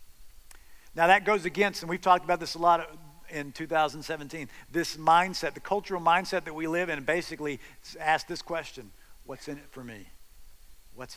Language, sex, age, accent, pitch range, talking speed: English, male, 50-69, American, 105-170 Hz, 170 wpm